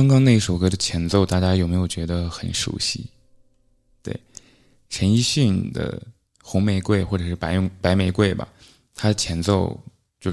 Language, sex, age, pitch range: Chinese, male, 20-39, 85-110 Hz